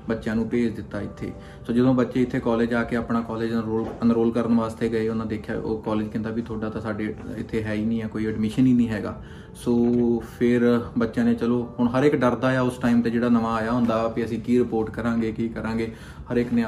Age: 20-39